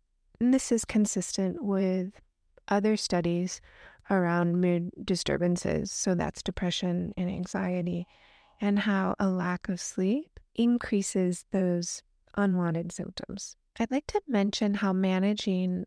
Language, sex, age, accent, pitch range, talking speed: English, female, 30-49, American, 180-210 Hz, 115 wpm